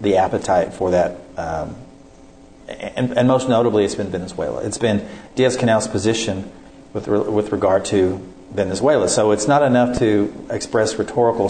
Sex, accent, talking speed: male, American, 155 wpm